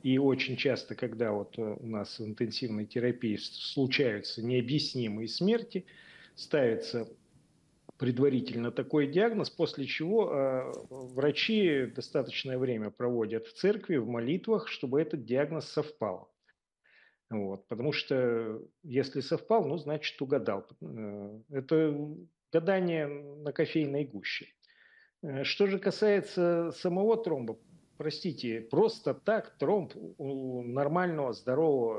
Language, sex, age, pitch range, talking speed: Russian, male, 40-59, 120-170 Hz, 100 wpm